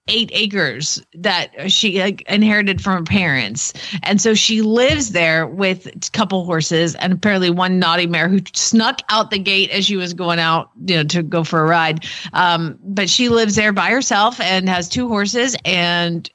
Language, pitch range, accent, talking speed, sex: English, 170-225 Hz, American, 190 wpm, female